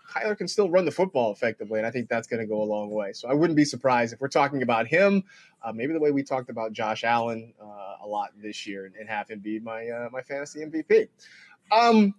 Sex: male